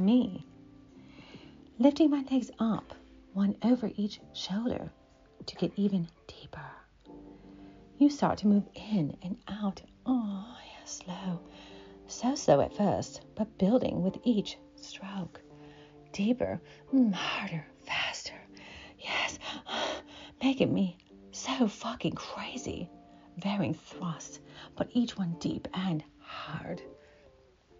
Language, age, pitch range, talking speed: English, 40-59, 165-250 Hz, 105 wpm